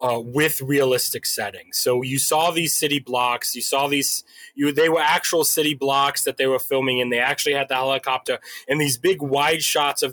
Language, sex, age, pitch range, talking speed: English, male, 20-39, 130-165 Hz, 205 wpm